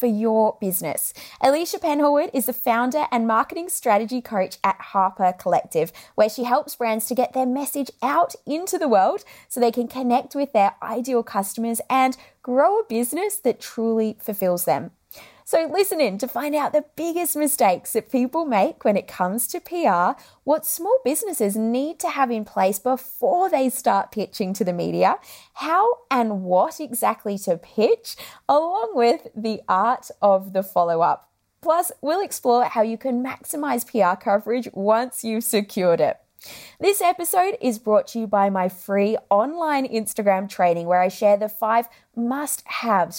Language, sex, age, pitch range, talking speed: English, female, 20-39, 200-290 Hz, 165 wpm